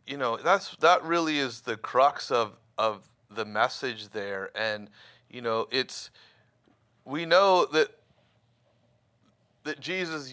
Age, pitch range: 30-49, 120-150 Hz